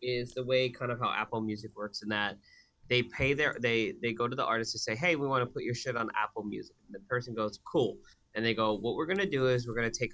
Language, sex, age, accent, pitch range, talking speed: English, male, 20-39, American, 110-125 Hz, 285 wpm